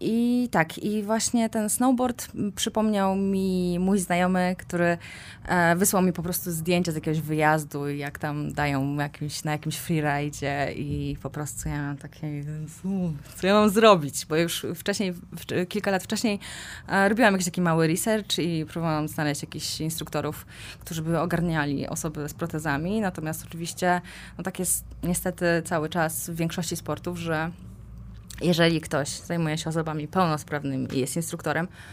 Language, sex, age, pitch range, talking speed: Polish, female, 20-39, 150-190 Hz, 145 wpm